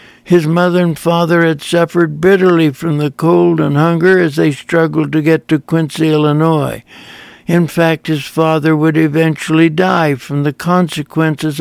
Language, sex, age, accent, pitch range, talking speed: English, male, 60-79, American, 155-180 Hz, 155 wpm